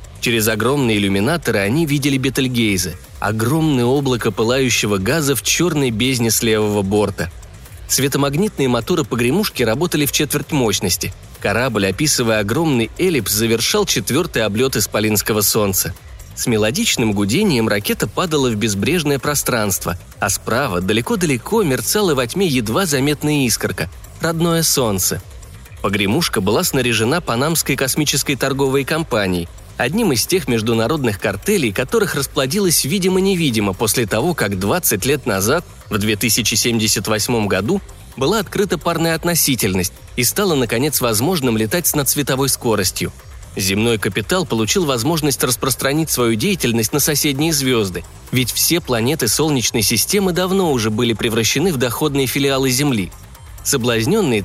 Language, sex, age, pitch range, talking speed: Russian, male, 20-39, 110-150 Hz, 125 wpm